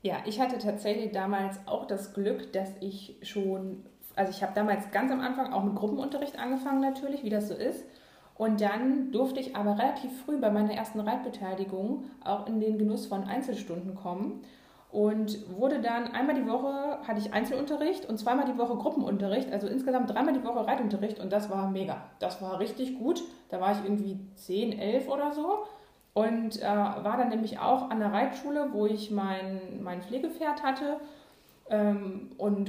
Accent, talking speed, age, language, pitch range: German, 180 wpm, 20-39, German, 195-250 Hz